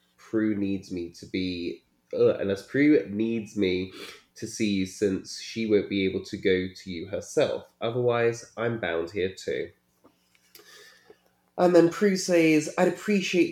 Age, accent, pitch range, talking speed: 20-39, British, 100-145 Hz, 150 wpm